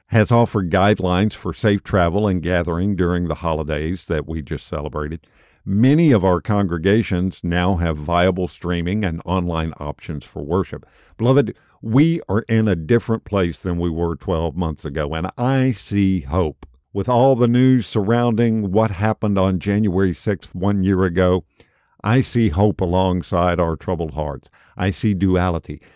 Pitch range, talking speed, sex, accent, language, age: 85-110 Hz, 155 wpm, male, American, English, 50-69